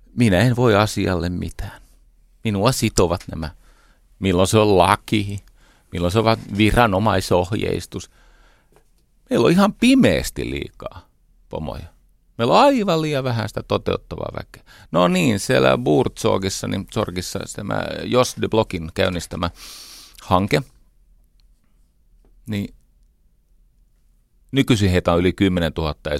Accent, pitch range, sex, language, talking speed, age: native, 85-115 Hz, male, Finnish, 110 wpm, 40-59